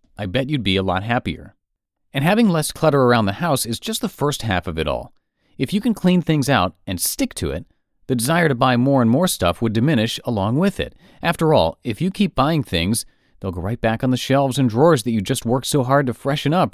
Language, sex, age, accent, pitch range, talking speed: English, male, 40-59, American, 105-150 Hz, 250 wpm